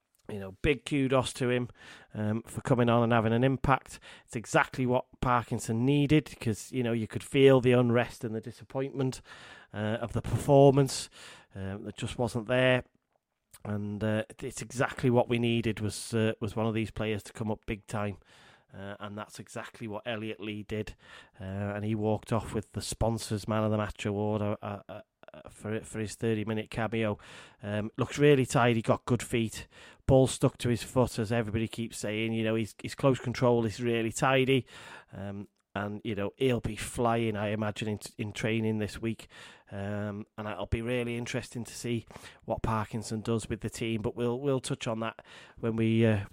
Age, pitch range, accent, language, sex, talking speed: 30-49, 105-120 Hz, British, English, male, 195 wpm